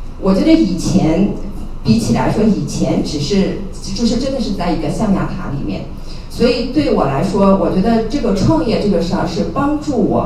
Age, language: 50-69, Chinese